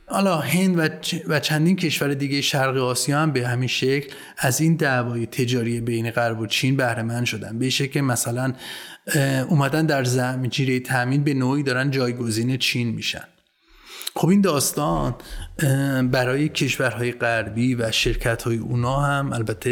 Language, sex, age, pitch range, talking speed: Persian, male, 30-49, 120-145 Hz, 150 wpm